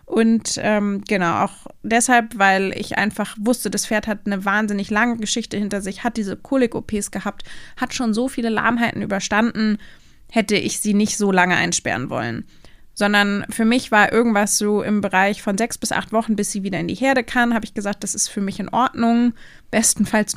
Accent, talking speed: German, 195 wpm